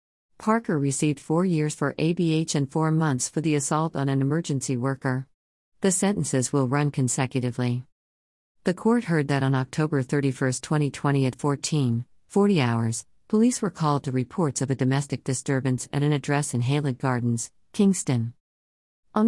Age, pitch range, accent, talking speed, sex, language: 50-69, 130-160 Hz, American, 155 wpm, female, English